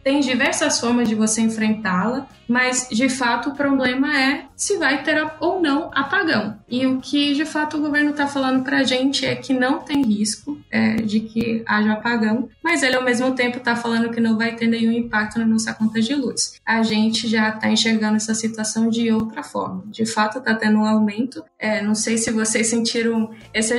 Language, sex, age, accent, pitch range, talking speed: Portuguese, female, 20-39, Brazilian, 220-260 Hz, 205 wpm